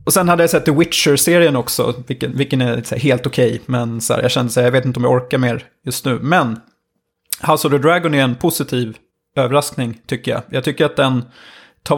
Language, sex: Swedish, male